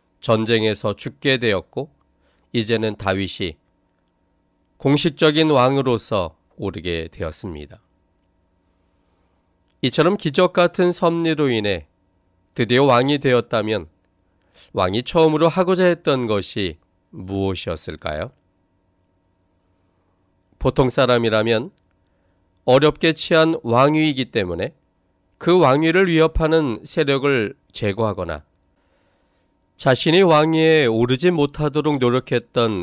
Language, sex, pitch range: Korean, male, 95-135 Hz